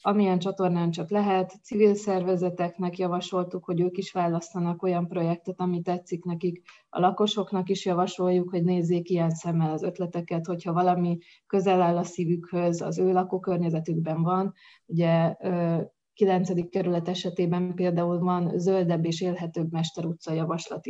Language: Hungarian